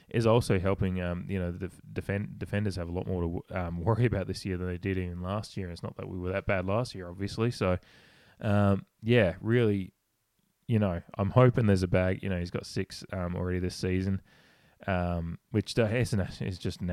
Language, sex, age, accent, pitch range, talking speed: English, male, 20-39, Australian, 90-105 Hz, 225 wpm